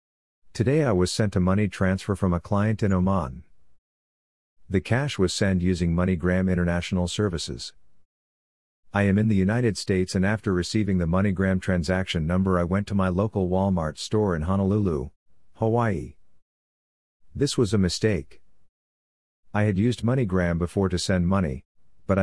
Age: 50-69